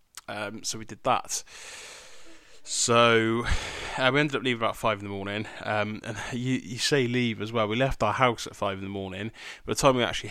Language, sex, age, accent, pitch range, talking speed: English, male, 20-39, British, 105-115 Hz, 220 wpm